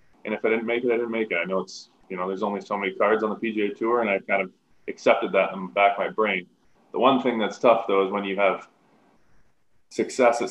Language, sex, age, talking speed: English, male, 20-39, 275 wpm